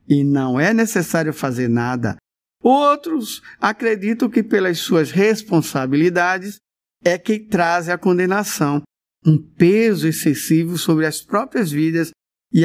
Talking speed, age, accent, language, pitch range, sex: 120 wpm, 50-69, Brazilian, Portuguese, 155-220 Hz, male